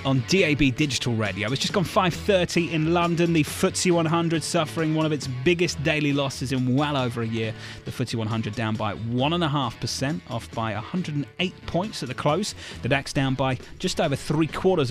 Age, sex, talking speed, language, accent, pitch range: 30-49, male, 185 wpm, English, British, 115-145 Hz